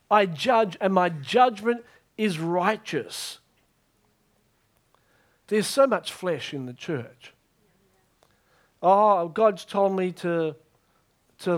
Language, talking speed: English, 105 wpm